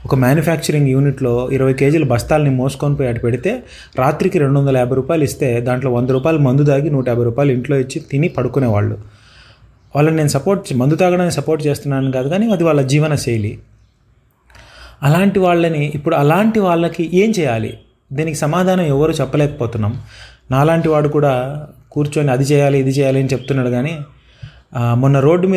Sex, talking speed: male, 85 wpm